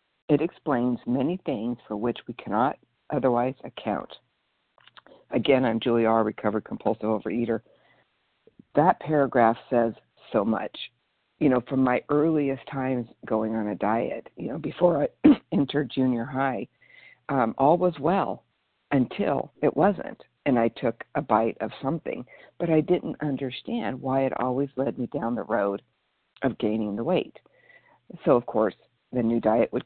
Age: 60-79